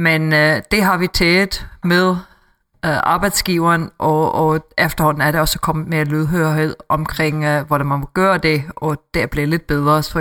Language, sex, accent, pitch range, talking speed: Danish, female, native, 150-170 Hz, 180 wpm